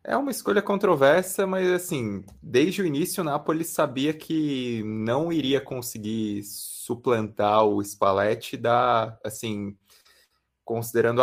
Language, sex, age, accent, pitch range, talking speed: Portuguese, male, 20-39, Brazilian, 110-135 Hz, 105 wpm